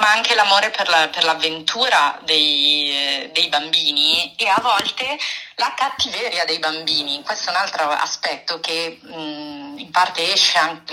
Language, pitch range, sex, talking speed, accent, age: Italian, 155-190 Hz, female, 160 wpm, native, 30-49